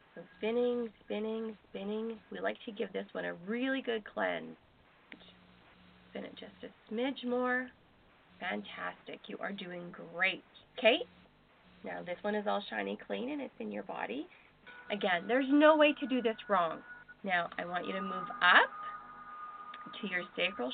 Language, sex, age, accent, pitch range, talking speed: English, female, 30-49, American, 185-275 Hz, 160 wpm